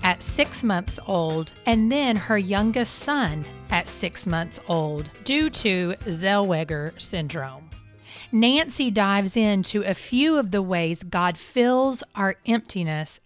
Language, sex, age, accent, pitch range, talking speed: English, female, 40-59, American, 165-235 Hz, 130 wpm